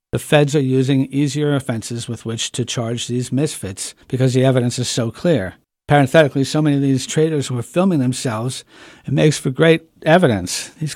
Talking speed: 180 wpm